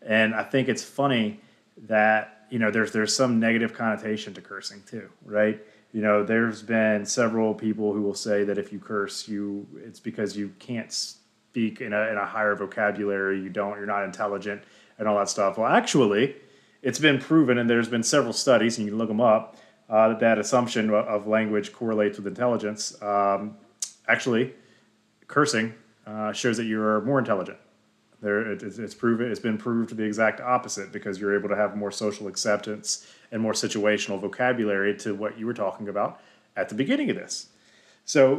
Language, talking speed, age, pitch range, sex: English, 190 wpm, 30-49, 105-120 Hz, male